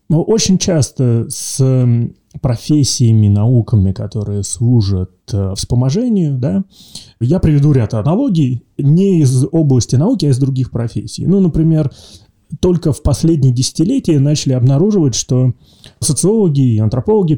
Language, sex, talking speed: Russian, male, 115 wpm